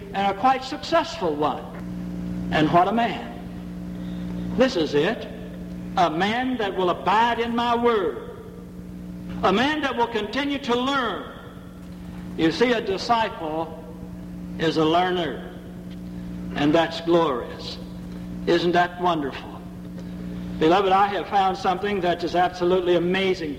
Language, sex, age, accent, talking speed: English, male, 60-79, American, 125 wpm